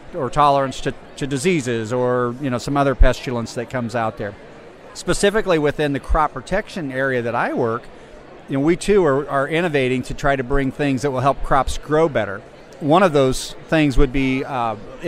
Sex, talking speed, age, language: male, 195 wpm, 40-59, English